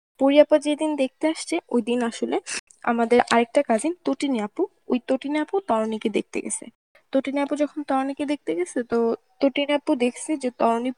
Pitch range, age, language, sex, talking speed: 225-285 Hz, 20-39, Bengali, female, 165 wpm